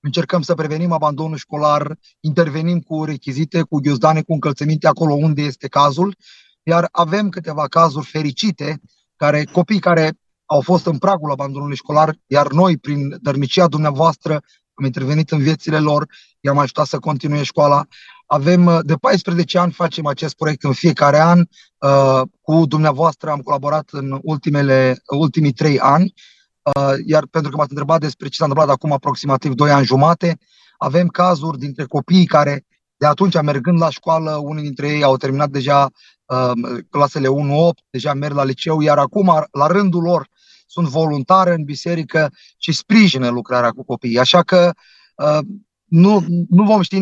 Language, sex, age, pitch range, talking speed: Romanian, male, 30-49, 145-170 Hz, 155 wpm